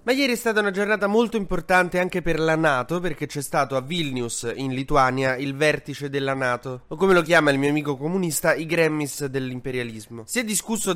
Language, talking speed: Italian, 205 wpm